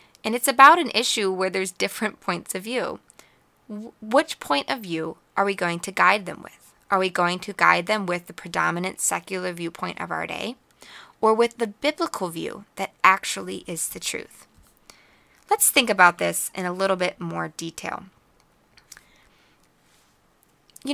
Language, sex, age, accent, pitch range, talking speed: English, female, 20-39, American, 180-250 Hz, 165 wpm